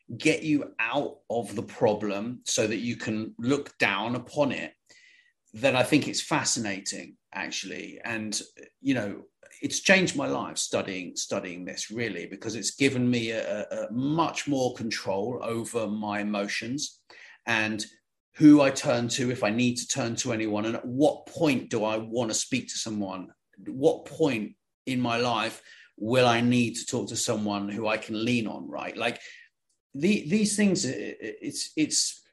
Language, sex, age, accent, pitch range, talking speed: English, male, 30-49, British, 110-145 Hz, 165 wpm